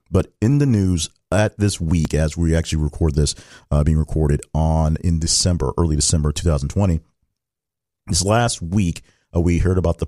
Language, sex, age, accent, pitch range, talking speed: English, male, 40-59, American, 85-105 Hz, 175 wpm